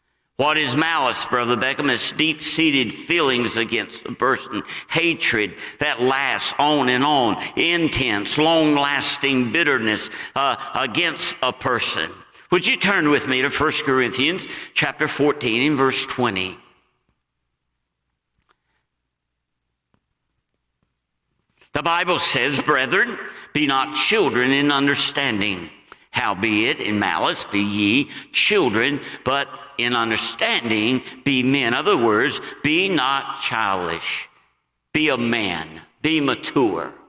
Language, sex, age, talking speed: English, male, 60-79, 110 wpm